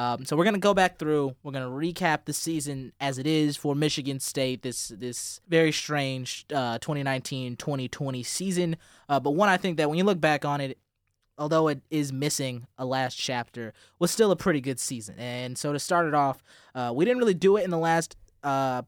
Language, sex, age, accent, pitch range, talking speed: English, male, 20-39, American, 120-145 Hz, 215 wpm